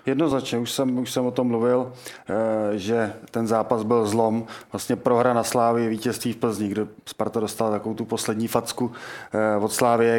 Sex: male